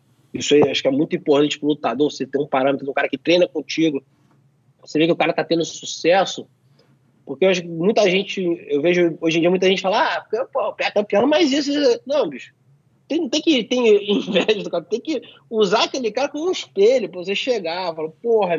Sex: male